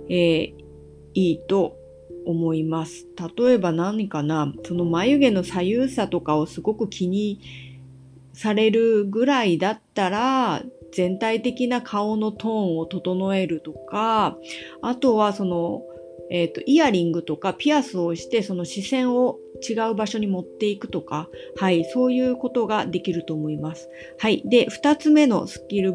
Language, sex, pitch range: Japanese, female, 170-255 Hz